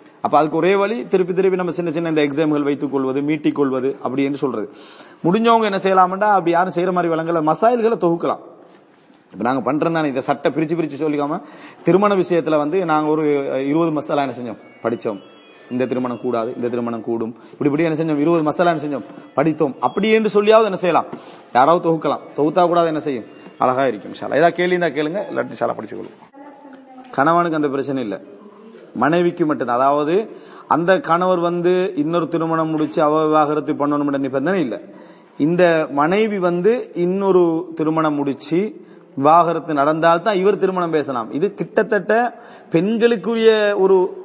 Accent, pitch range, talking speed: Indian, 155-200 Hz, 80 wpm